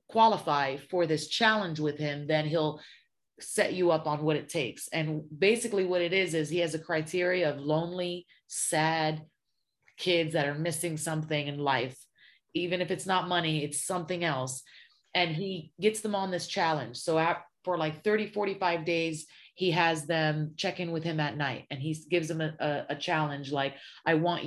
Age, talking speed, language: 30-49, 185 wpm, English